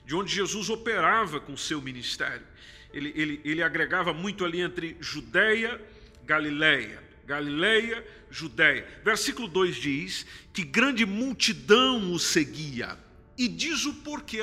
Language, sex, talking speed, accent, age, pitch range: Portuguese, male, 130 wpm, Brazilian, 50-69, 150-210 Hz